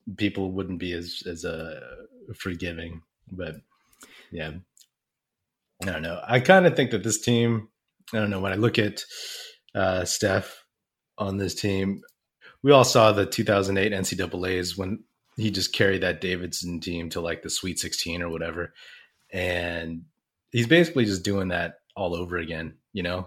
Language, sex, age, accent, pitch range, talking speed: English, male, 30-49, American, 90-125 Hz, 160 wpm